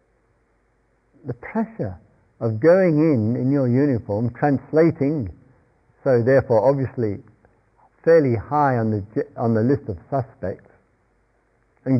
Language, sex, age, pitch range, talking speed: English, male, 60-79, 115-155 Hz, 110 wpm